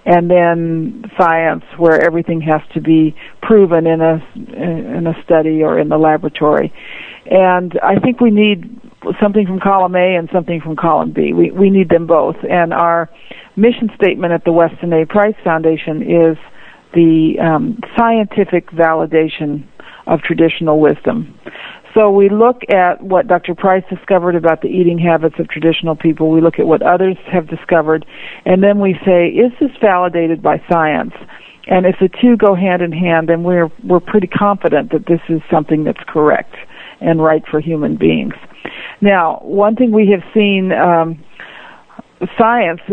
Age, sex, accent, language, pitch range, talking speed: 50-69, female, American, English, 160-195 Hz, 165 wpm